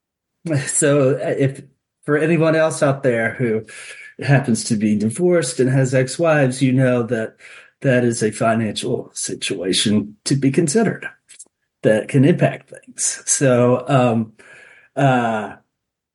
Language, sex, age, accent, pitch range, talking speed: English, male, 40-59, American, 115-155 Hz, 125 wpm